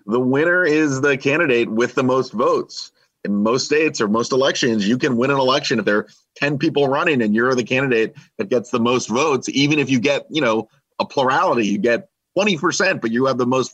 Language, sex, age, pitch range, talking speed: English, male, 30-49, 105-130 Hz, 225 wpm